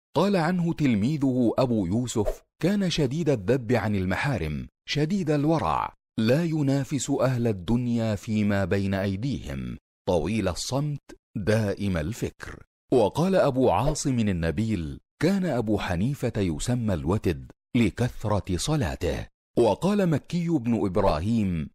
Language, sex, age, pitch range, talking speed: Arabic, male, 40-59, 95-140 Hz, 105 wpm